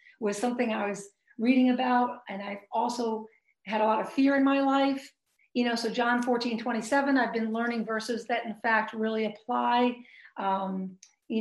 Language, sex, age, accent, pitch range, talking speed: English, female, 40-59, American, 230-270 Hz, 185 wpm